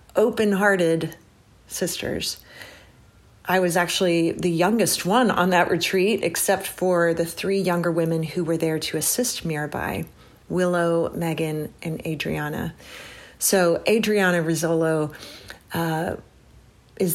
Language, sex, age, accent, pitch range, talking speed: English, female, 40-59, American, 165-195 Hz, 110 wpm